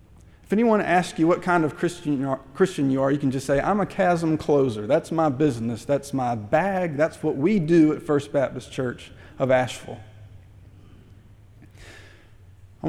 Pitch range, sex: 140-200 Hz, male